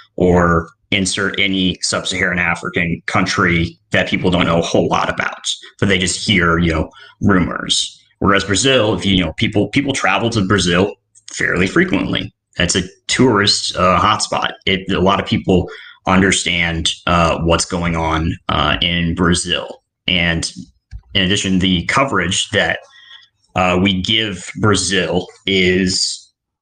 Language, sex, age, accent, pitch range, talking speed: English, male, 30-49, American, 90-100 Hz, 140 wpm